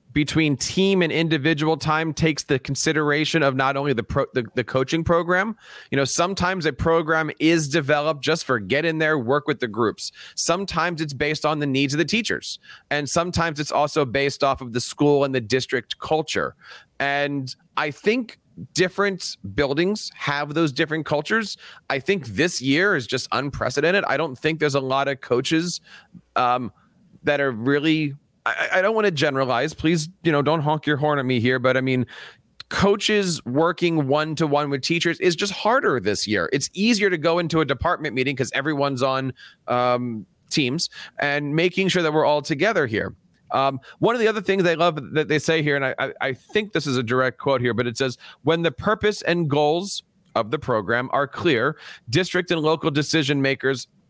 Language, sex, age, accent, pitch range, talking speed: English, male, 30-49, American, 135-165 Hz, 195 wpm